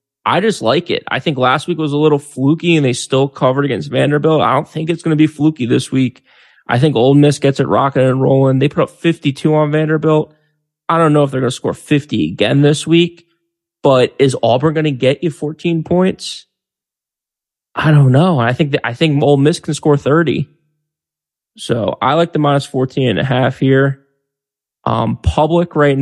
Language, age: English, 20-39